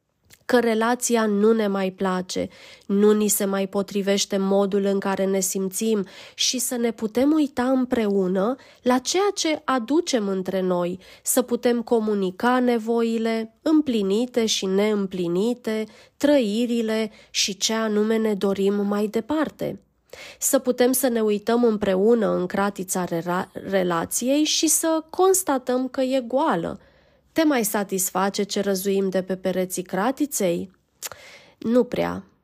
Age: 20-39